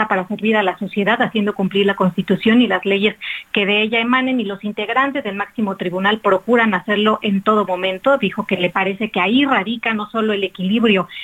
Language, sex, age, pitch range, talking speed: Spanish, female, 40-59, 195-225 Hz, 205 wpm